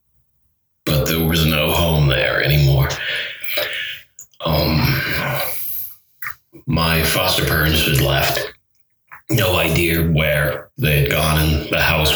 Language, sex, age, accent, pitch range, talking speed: English, male, 30-49, American, 75-90 Hz, 110 wpm